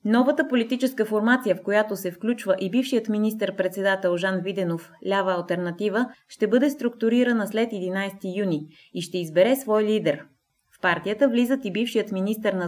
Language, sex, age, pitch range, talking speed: Bulgarian, female, 20-39, 180-220 Hz, 155 wpm